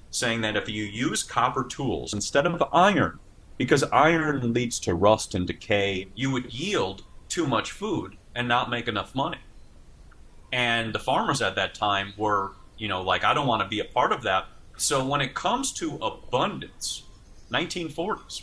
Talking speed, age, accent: 175 wpm, 30-49, American